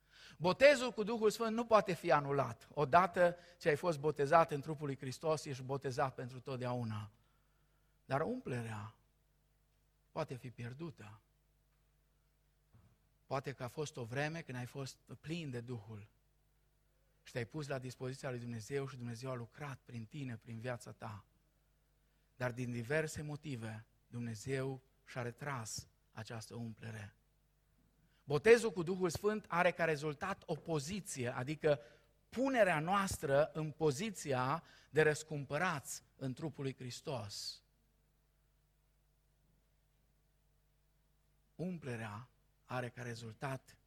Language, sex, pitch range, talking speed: Romanian, male, 125-160 Hz, 120 wpm